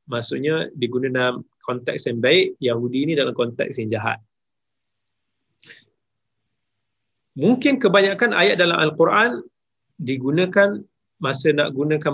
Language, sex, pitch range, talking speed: Malay, male, 115-150 Hz, 105 wpm